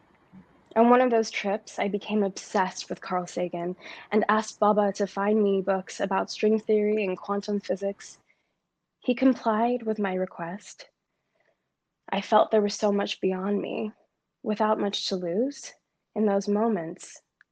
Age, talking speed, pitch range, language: 20-39, 150 wpm, 185-215 Hz, English